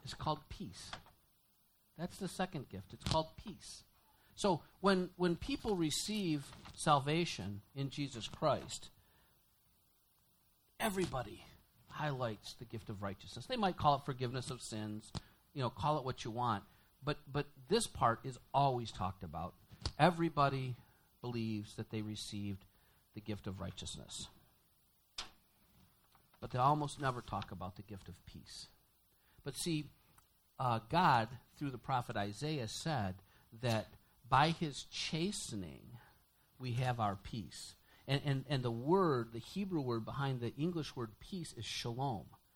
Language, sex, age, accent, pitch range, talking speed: English, male, 50-69, American, 105-145 Hz, 140 wpm